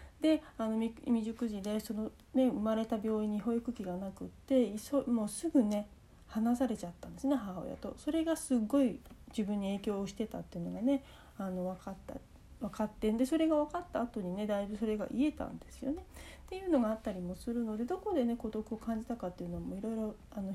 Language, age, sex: Japanese, 40-59, female